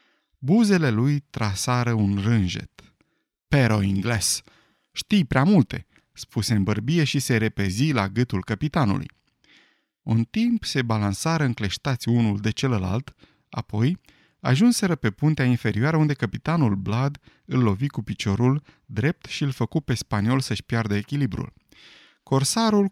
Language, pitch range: Romanian, 110-150 Hz